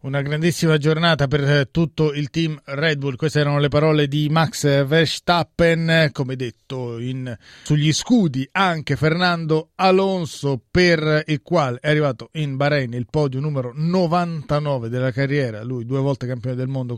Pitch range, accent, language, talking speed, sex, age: 125-155 Hz, native, Italian, 150 wpm, male, 30-49